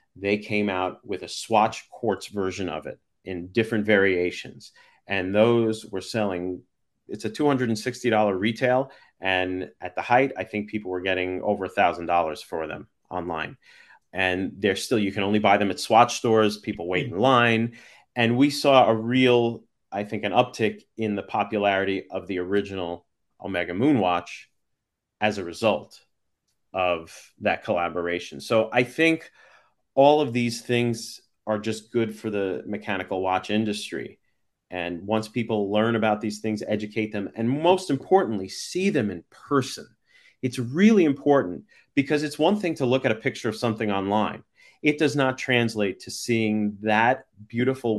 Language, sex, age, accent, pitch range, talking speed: English, male, 30-49, American, 95-120 Hz, 160 wpm